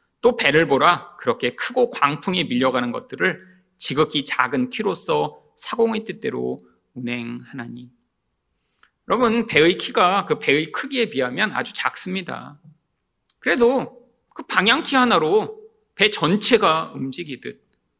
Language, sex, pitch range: Korean, male, 145-240 Hz